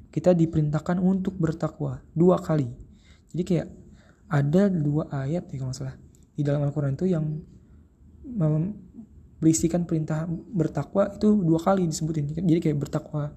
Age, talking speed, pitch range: 20-39, 125 wpm, 145-175 Hz